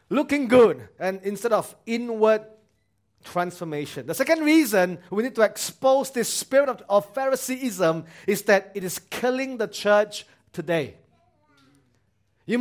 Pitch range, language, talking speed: 170-260 Hz, English, 135 wpm